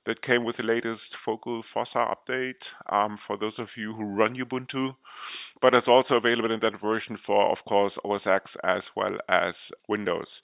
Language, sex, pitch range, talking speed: English, male, 105-125 Hz, 185 wpm